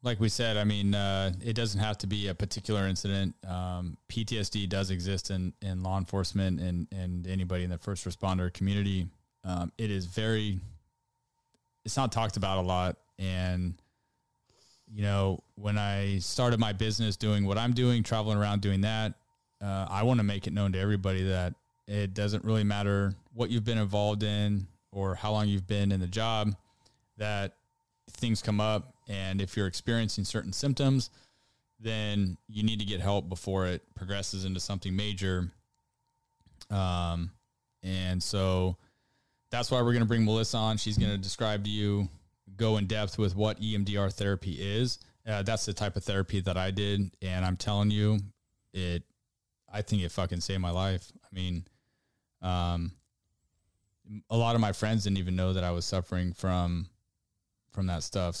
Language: English